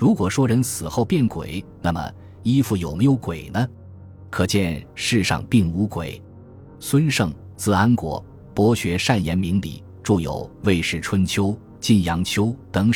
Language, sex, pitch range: Chinese, male, 85-110 Hz